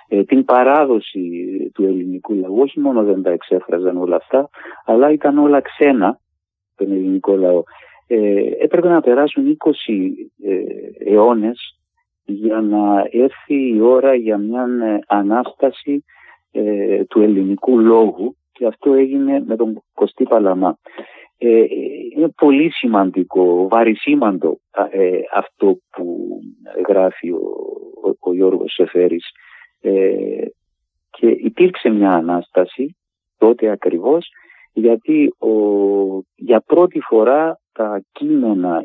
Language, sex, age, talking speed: Greek, male, 50-69, 100 wpm